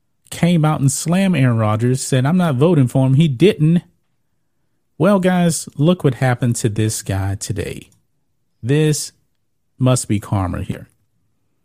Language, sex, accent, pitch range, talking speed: English, male, American, 125-155 Hz, 145 wpm